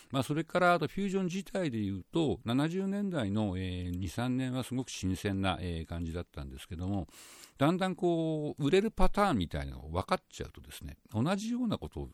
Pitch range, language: 85-140 Hz, Japanese